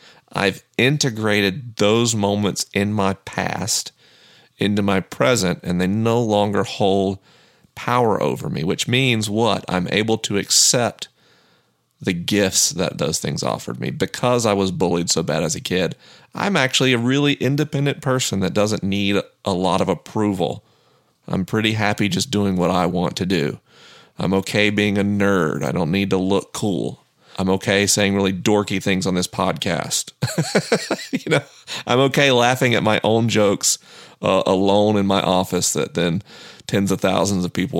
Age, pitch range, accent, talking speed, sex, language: 40-59, 95-115 Hz, American, 165 wpm, male, English